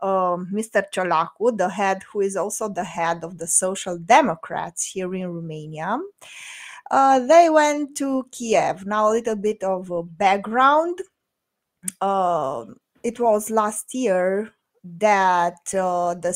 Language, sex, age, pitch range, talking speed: English, female, 20-39, 185-230 Hz, 135 wpm